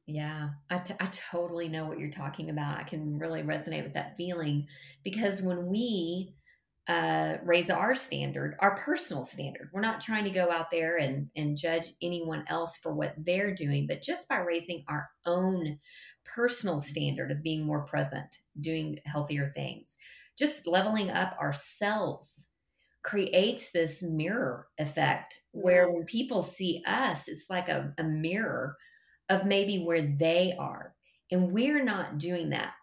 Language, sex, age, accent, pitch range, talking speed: English, female, 40-59, American, 155-190 Hz, 155 wpm